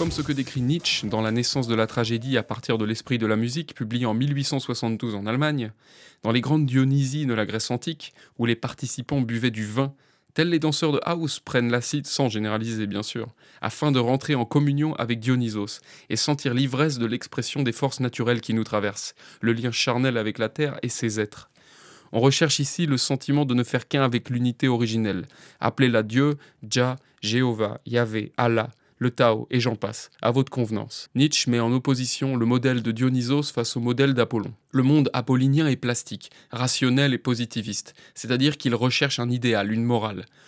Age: 20-39